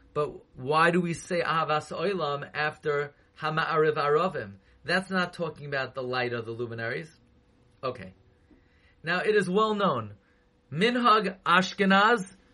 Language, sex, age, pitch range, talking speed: English, male, 30-49, 135-190 Hz, 125 wpm